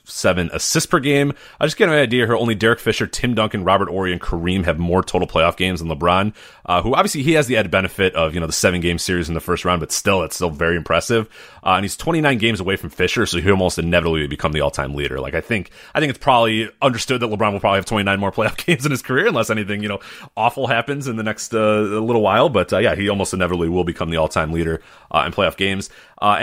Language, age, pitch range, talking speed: English, 30-49, 85-115 Hz, 270 wpm